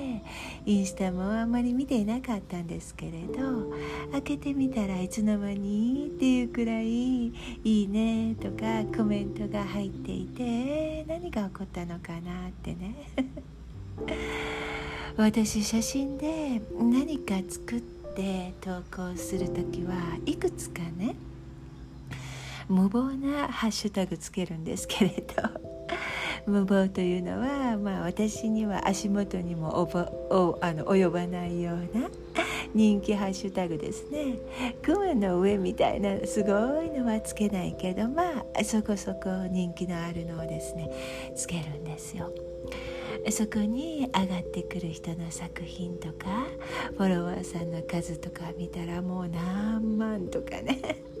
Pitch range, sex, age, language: 170-225 Hz, female, 60-79, Japanese